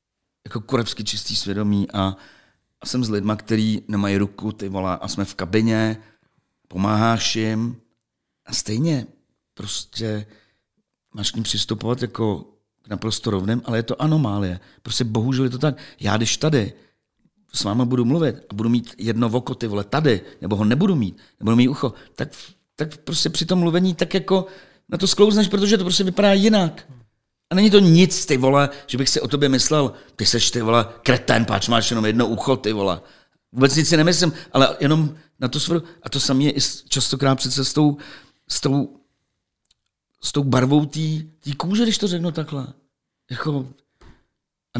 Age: 50-69